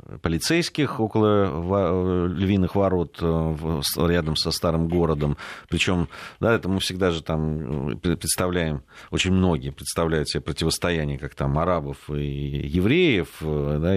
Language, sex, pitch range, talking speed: Russian, male, 80-100 Hz, 115 wpm